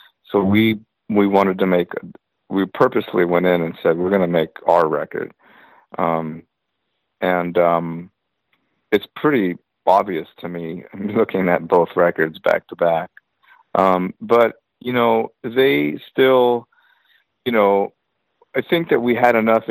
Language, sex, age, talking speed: English, male, 50-69, 145 wpm